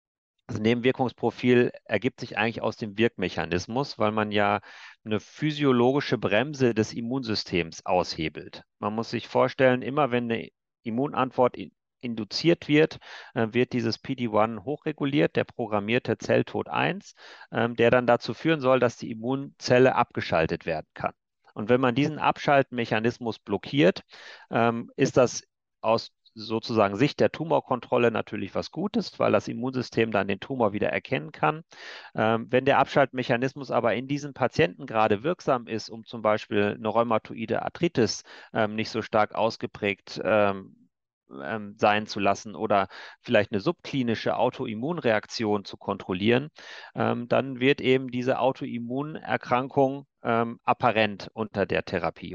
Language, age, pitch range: German, 40-59, 105-130 Hz